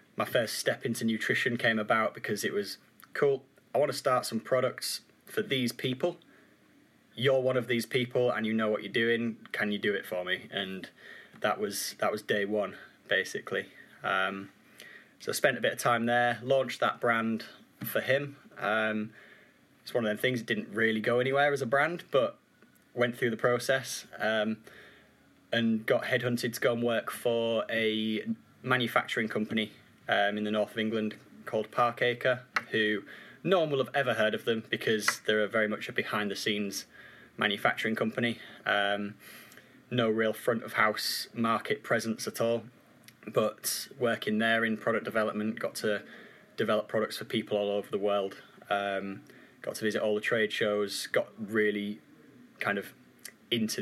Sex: male